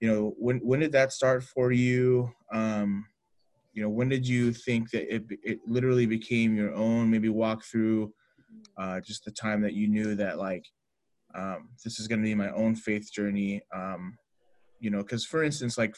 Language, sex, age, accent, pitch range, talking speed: English, male, 20-39, American, 105-115 Hz, 195 wpm